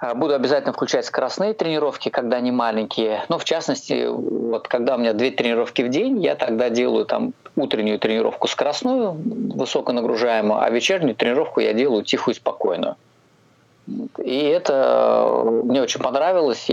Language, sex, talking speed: Russian, male, 135 wpm